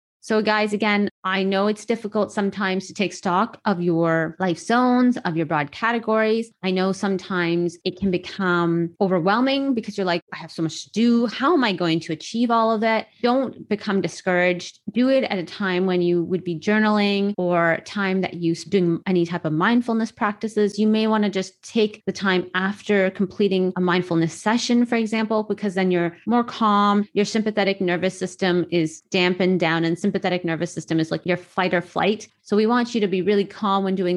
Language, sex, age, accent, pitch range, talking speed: English, female, 30-49, American, 175-210 Hz, 205 wpm